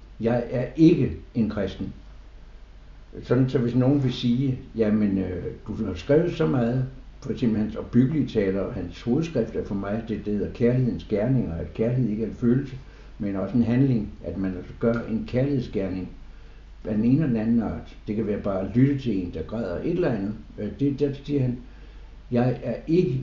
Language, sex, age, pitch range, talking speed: Danish, male, 60-79, 105-130 Hz, 195 wpm